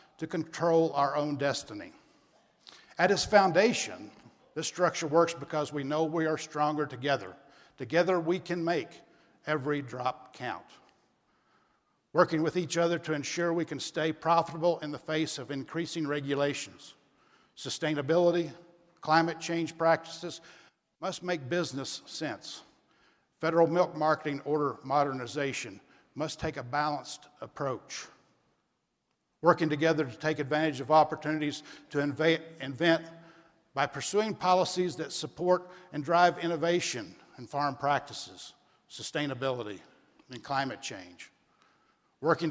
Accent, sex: American, male